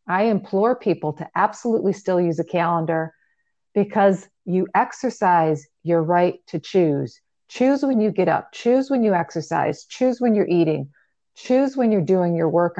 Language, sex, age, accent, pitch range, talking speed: English, female, 40-59, American, 165-200 Hz, 165 wpm